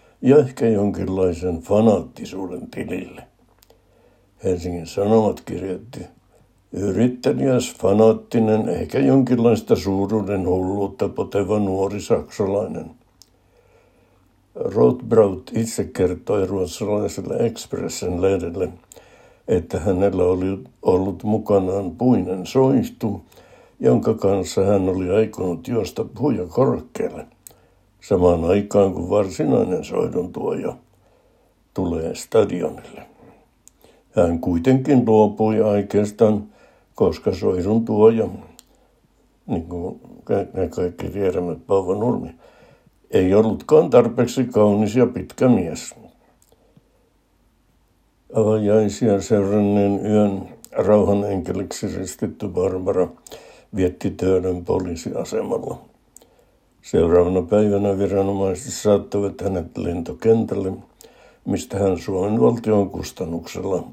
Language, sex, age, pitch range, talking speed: Finnish, male, 60-79, 95-110 Hz, 80 wpm